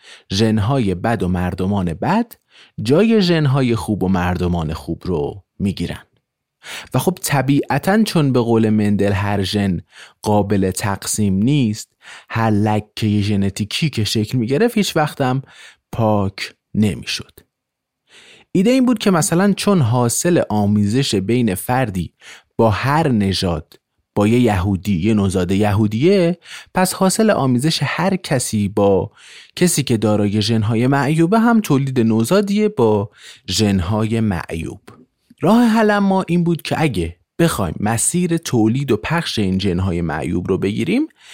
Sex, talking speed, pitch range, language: male, 130 wpm, 100-165 Hz, Persian